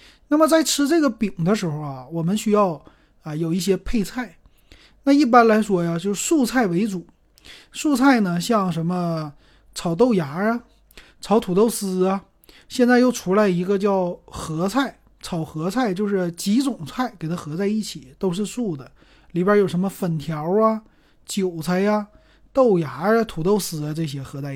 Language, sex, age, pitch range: Chinese, male, 30-49, 160-215 Hz